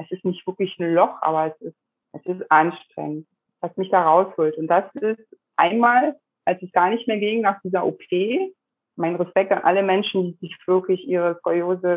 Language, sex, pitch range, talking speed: German, female, 180-220 Hz, 195 wpm